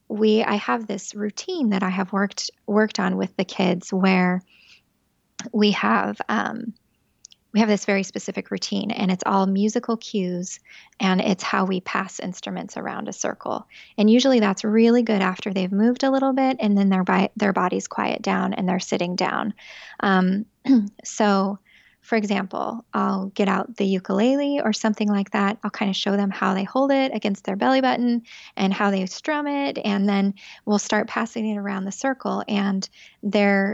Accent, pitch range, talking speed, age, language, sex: American, 195-230 Hz, 185 wpm, 10-29, English, female